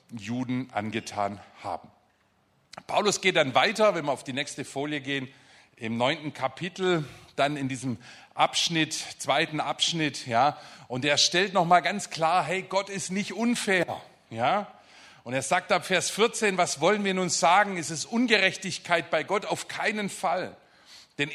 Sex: male